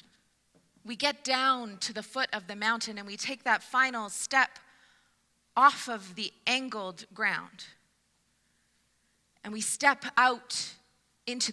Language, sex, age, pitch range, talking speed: English, female, 20-39, 205-245 Hz, 130 wpm